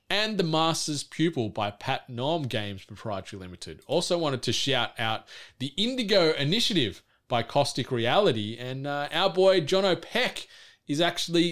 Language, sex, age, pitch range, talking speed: English, male, 20-39, 115-150 Hz, 150 wpm